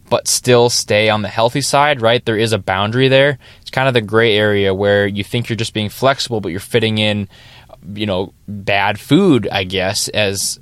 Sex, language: male, English